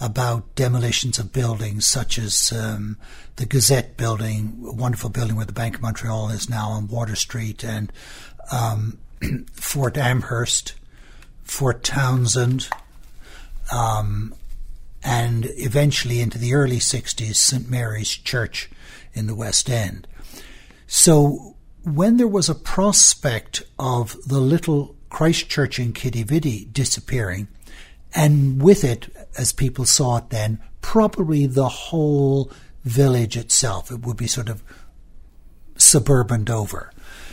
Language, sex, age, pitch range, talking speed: English, male, 60-79, 110-135 Hz, 125 wpm